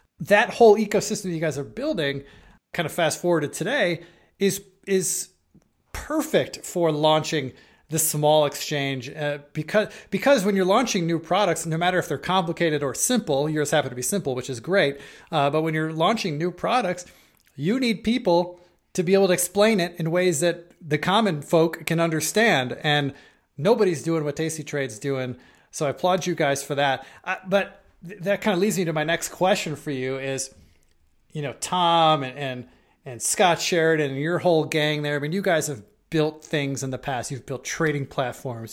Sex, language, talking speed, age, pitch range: male, English, 190 wpm, 30-49, 140-180 Hz